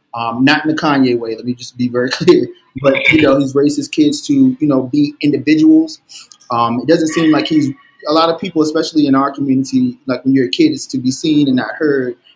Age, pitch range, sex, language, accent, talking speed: 30-49, 130-150 Hz, male, English, American, 245 wpm